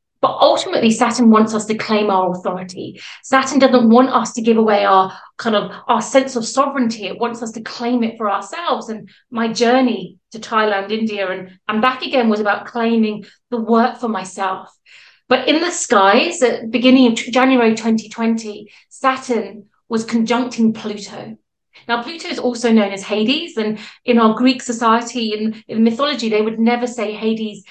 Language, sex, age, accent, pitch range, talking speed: English, female, 30-49, British, 215-250 Hz, 180 wpm